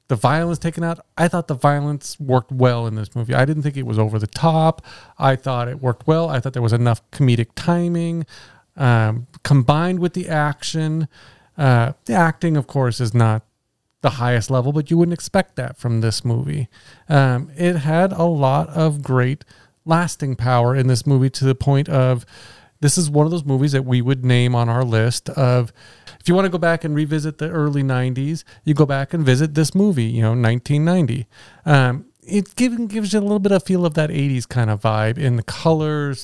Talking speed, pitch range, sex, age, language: 205 wpm, 125-160 Hz, male, 40-59, English